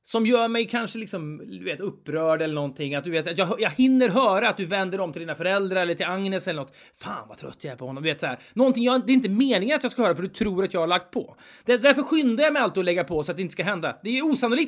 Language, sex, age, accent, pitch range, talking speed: Swedish, male, 30-49, native, 170-240 Hz, 310 wpm